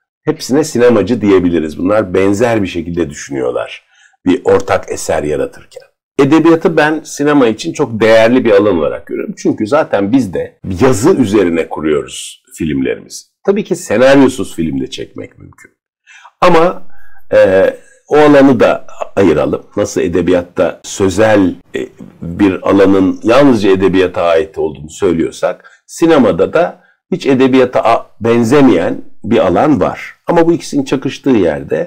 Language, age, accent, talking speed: Turkish, 50-69, native, 125 wpm